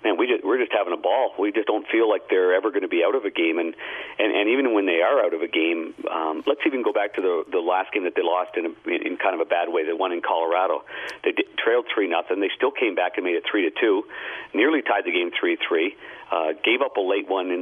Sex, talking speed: male, 295 wpm